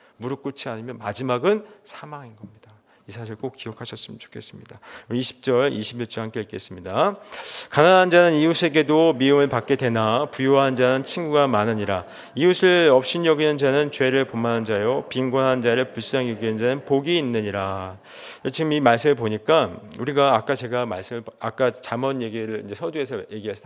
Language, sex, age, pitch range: Korean, male, 40-59, 115-155 Hz